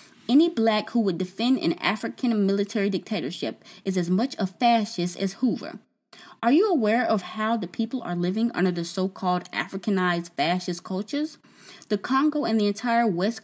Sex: female